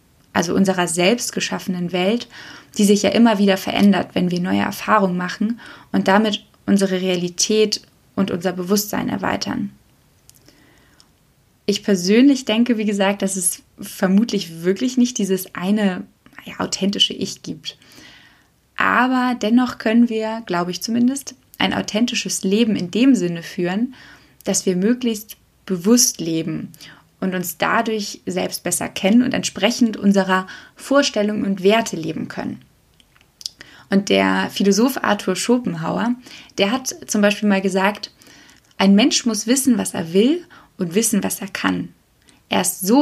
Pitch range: 190-230 Hz